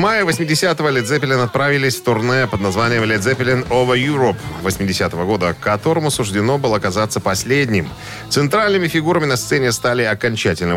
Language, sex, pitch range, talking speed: Russian, male, 100-135 Hz, 140 wpm